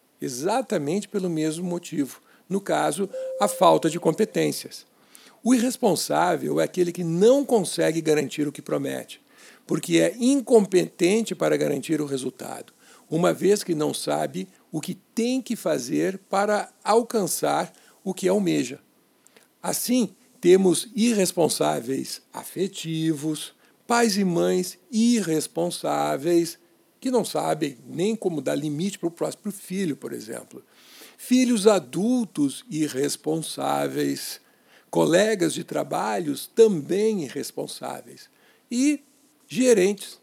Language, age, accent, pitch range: Portuguese, 60-79, Brazilian, 155-225 Hz